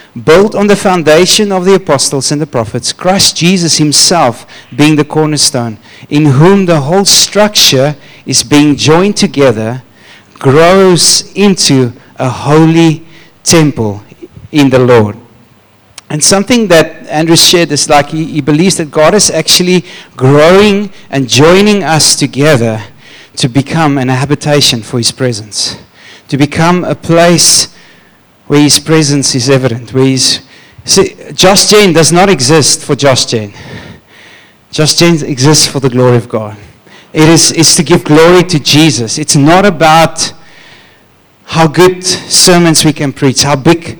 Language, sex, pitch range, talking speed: English, male, 140-175 Hz, 145 wpm